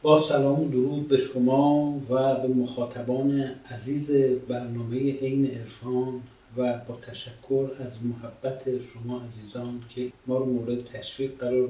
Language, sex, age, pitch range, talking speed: Persian, male, 50-69, 120-140 Hz, 135 wpm